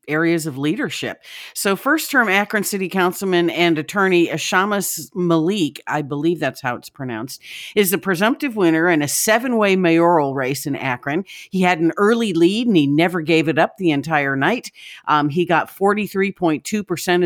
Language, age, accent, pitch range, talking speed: English, 50-69, American, 155-195 Hz, 165 wpm